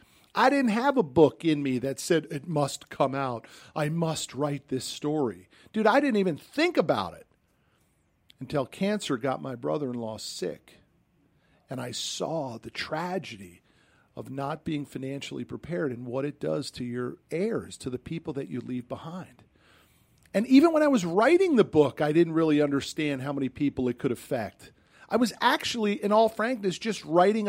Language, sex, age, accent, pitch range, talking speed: English, male, 50-69, American, 140-215 Hz, 175 wpm